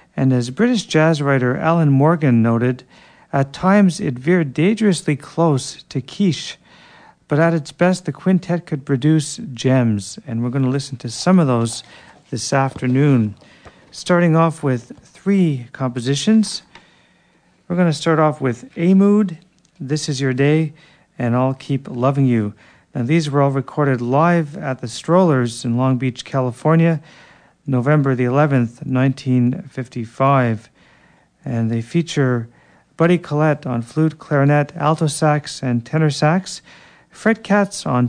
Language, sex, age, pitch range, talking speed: English, male, 40-59, 130-160 Hz, 140 wpm